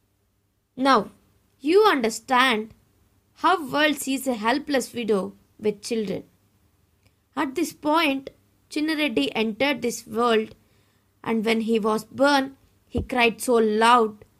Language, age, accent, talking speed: English, 20-39, Indian, 115 wpm